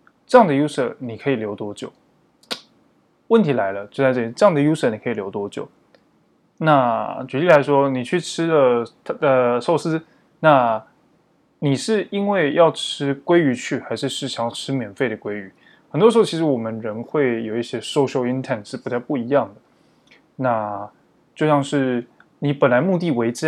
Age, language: 20-39, Chinese